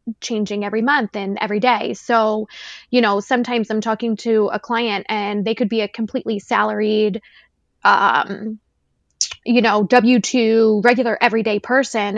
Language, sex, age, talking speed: English, female, 20-39, 145 wpm